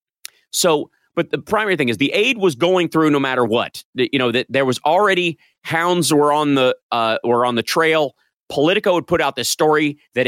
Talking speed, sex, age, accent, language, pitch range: 215 wpm, male, 30-49, American, English, 125-160 Hz